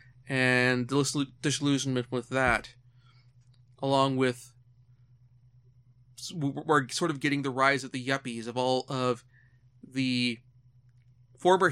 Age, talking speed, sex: 30-49, 100 wpm, male